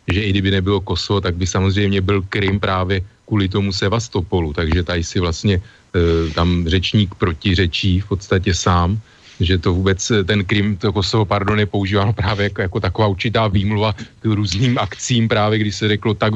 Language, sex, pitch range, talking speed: Slovak, male, 95-110 Hz, 180 wpm